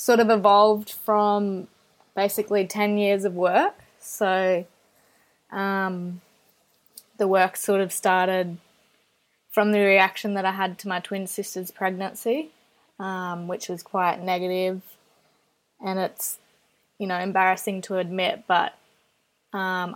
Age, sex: 20-39, female